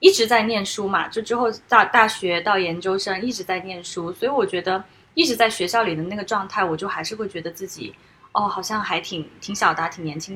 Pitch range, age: 180-250 Hz, 20-39